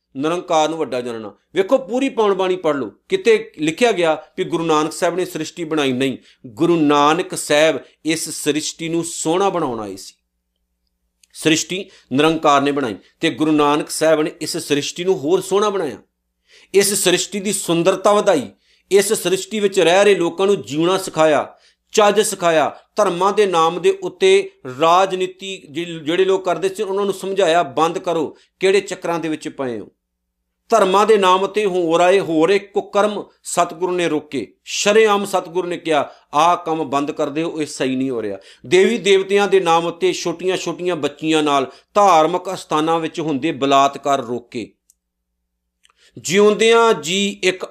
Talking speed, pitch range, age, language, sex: 155 wpm, 155-195 Hz, 50-69, Punjabi, male